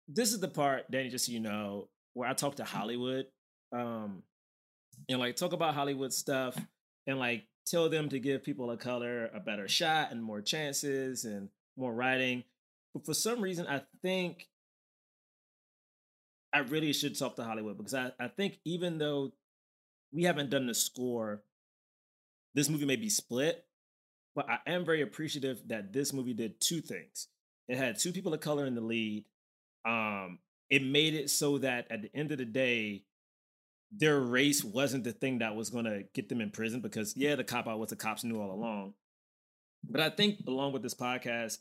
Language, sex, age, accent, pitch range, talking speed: English, male, 20-39, American, 110-140 Hz, 185 wpm